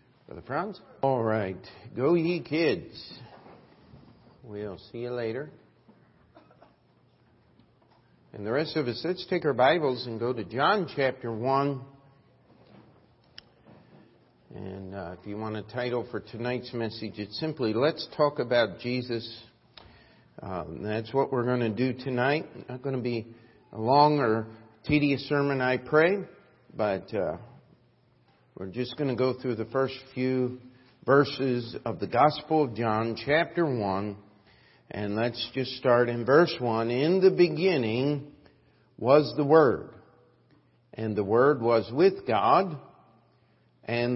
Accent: American